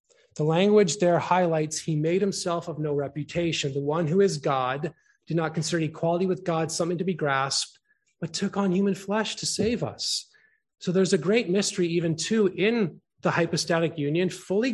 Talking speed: 185 wpm